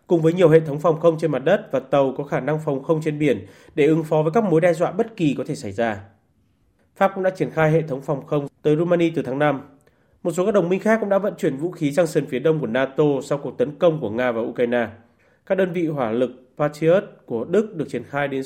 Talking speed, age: 275 wpm, 20-39